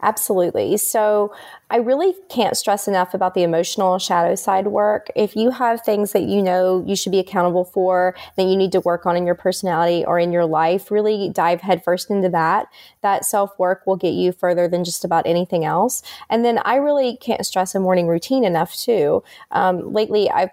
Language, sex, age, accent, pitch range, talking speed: English, female, 20-39, American, 180-205 Hz, 200 wpm